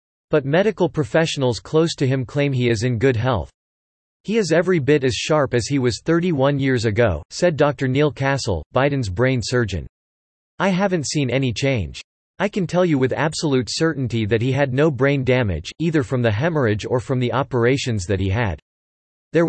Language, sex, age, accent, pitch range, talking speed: English, male, 40-59, American, 115-150 Hz, 190 wpm